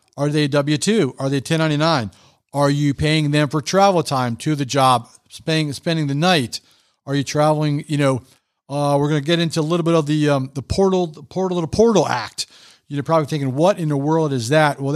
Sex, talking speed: male, 225 wpm